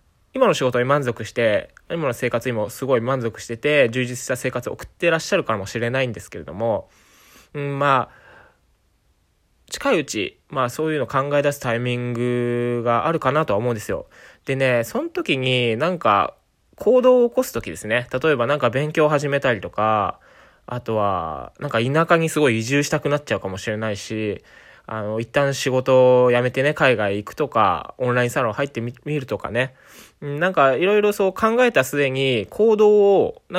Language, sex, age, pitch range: Japanese, male, 20-39, 115-155 Hz